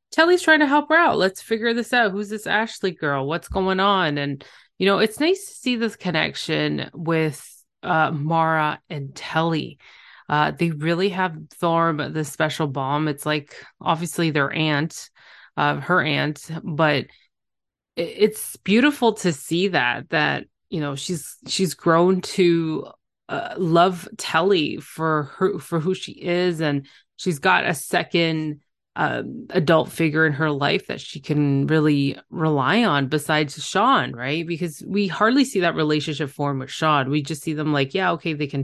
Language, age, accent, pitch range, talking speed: English, 20-39, American, 145-185 Hz, 170 wpm